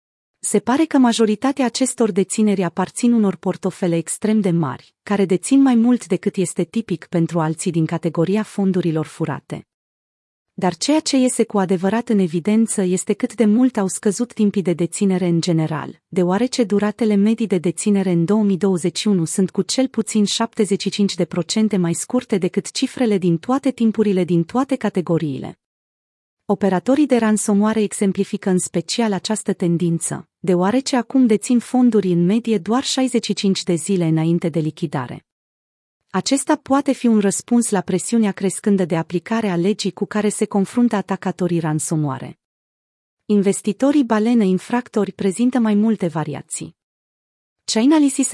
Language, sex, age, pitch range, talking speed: Romanian, female, 30-49, 175-225 Hz, 140 wpm